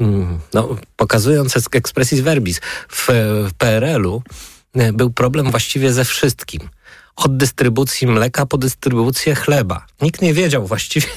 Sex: male